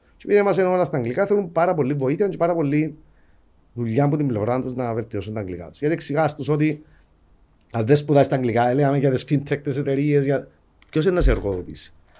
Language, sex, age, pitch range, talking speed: Greek, male, 40-59, 95-160 Hz, 210 wpm